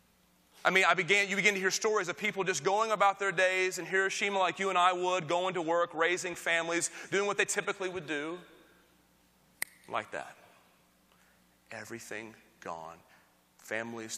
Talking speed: 165 wpm